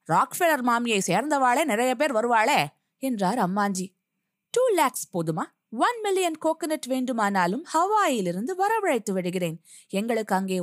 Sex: female